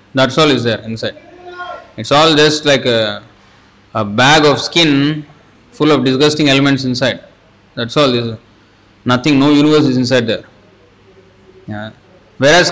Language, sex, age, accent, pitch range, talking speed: English, male, 20-39, Indian, 100-150 Hz, 130 wpm